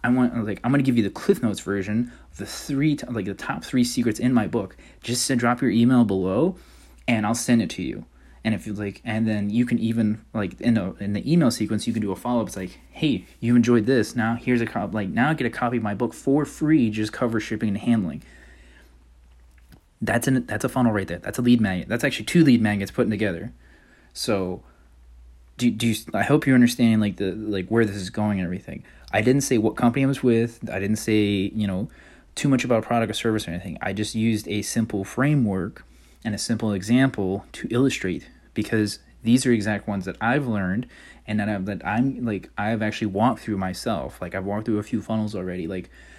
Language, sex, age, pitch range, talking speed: English, male, 20-39, 100-120 Hz, 230 wpm